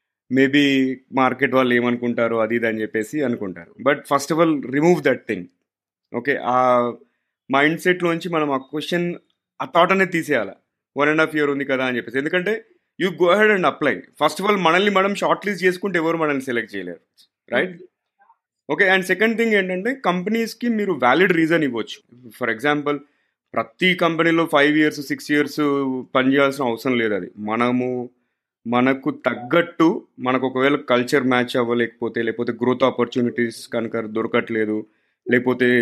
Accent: native